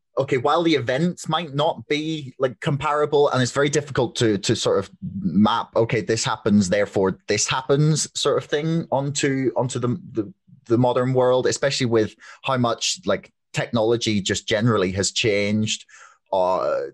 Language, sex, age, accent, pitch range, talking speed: English, male, 30-49, British, 105-140 Hz, 160 wpm